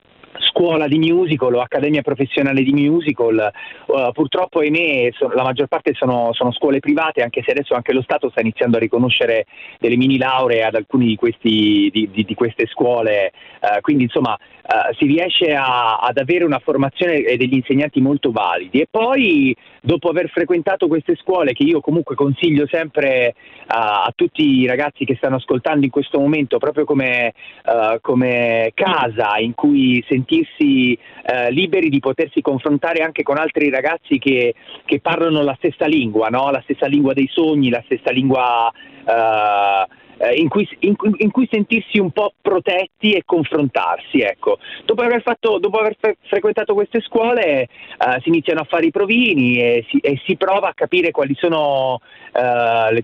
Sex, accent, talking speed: male, native, 175 wpm